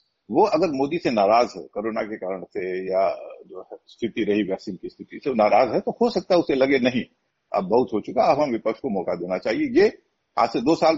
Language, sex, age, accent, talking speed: Hindi, male, 50-69, native, 235 wpm